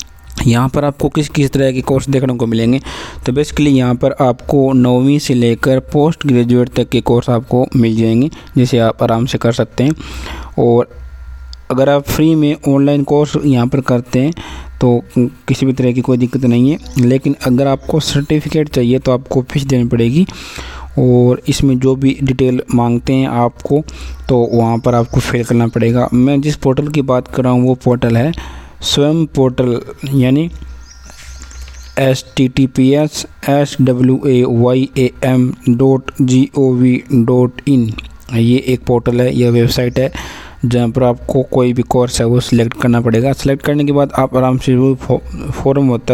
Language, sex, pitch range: Hindi, male, 120-135 Hz